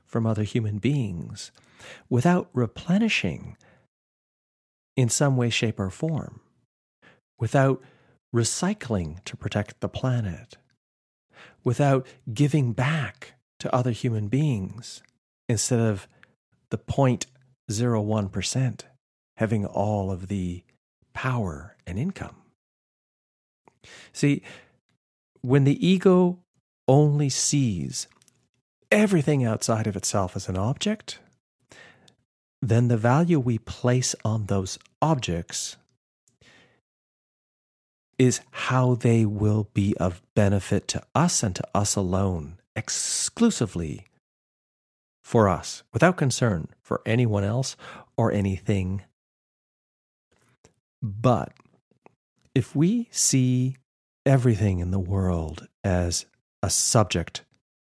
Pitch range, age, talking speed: 100-130 Hz, 40-59, 95 wpm